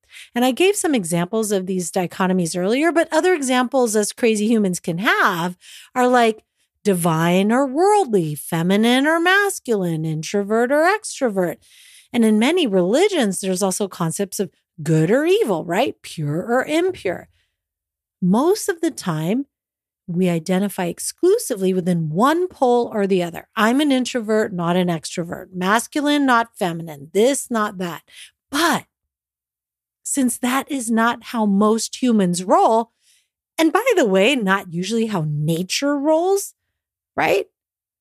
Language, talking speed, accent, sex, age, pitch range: English, 135 wpm, American, female, 40-59, 185-265 Hz